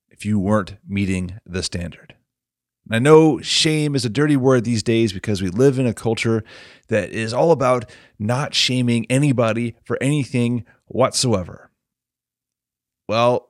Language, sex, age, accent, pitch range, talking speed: English, male, 30-49, American, 100-130 Hz, 140 wpm